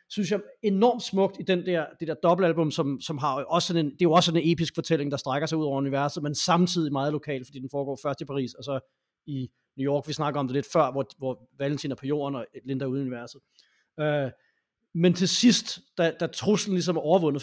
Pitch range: 140-170 Hz